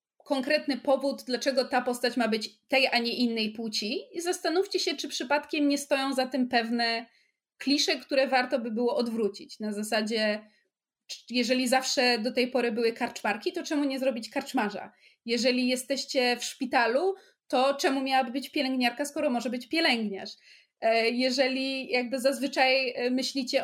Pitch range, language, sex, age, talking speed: 230-275 Hz, Polish, female, 20-39, 150 wpm